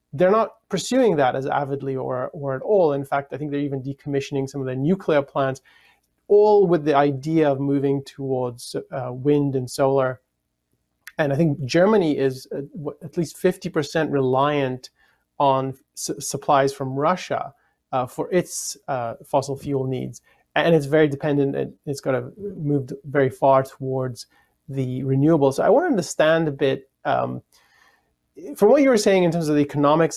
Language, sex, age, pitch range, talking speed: English, male, 30-49, 135-165 Hz, 170 wpm